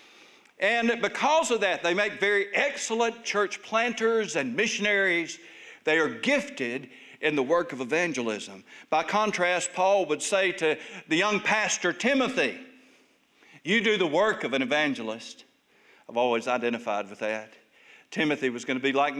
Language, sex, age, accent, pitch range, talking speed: English, male, 60-79, American, 145-215 Hz, 150 wpm